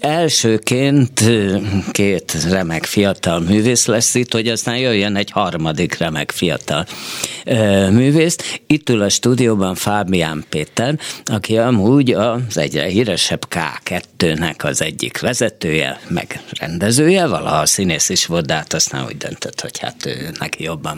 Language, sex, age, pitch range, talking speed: Hungarian, male, 50-69, 95-130 Hz, 130 wpm